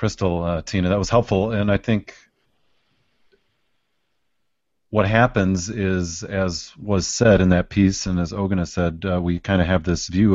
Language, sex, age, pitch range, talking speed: English, male, 40-59, 90-105 Hz, 175 wpm